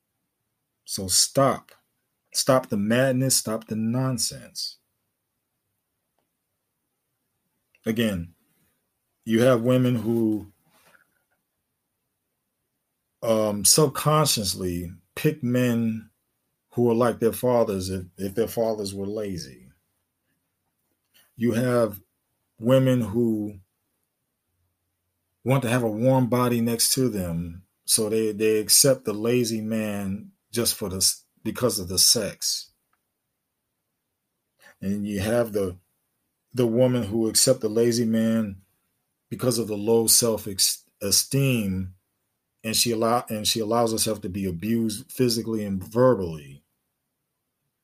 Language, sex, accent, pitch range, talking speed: English, male, American, 100-120 Hz, 105 wpm